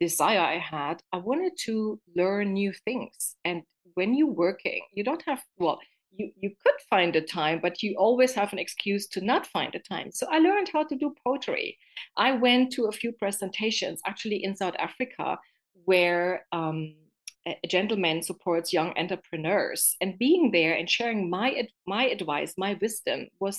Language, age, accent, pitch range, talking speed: English, 40-59, German, 175-240 Hz, 180 wpm